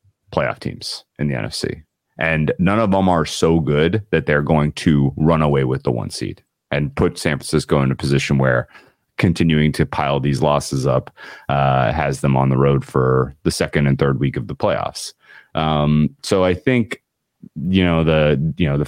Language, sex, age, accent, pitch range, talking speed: English, male, 30-49, American, 70-85 Hz, 195 wpm